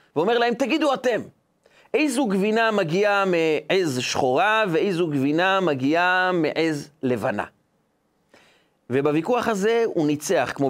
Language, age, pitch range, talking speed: Hebrew, 30-49, 150-200 Hz, 105 wpm